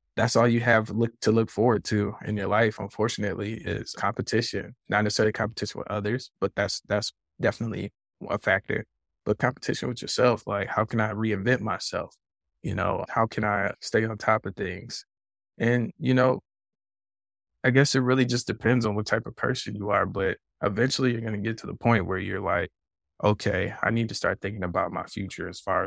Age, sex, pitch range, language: 20-39, male, 100-115 Hz, English